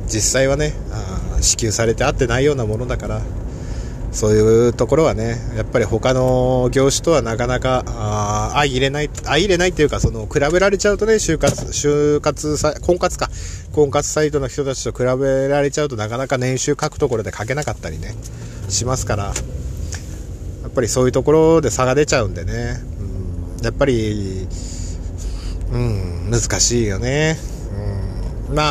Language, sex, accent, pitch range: Japanese, male, native, 110-150 Hz